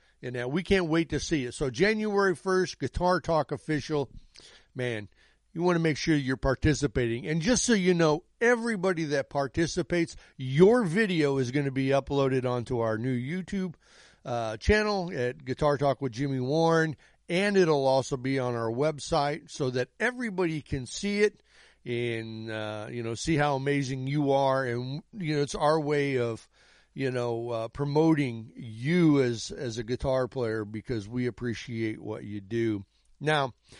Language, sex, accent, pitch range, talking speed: English, male, American, 125-165 Hz, 170 wpm